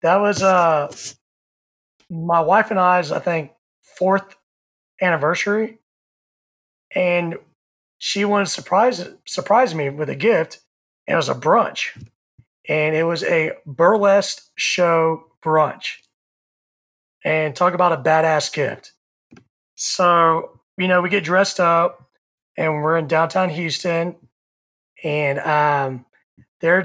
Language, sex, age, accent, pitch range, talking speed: English, male, 30-49, American, 150-185 Hz, 120 wpm